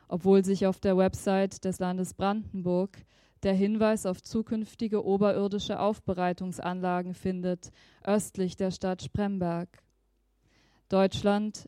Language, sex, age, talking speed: German, female, 20-39, 105 wpm